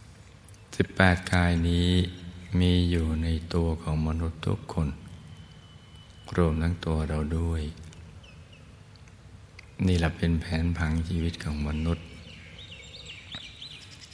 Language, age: Thai, 60-79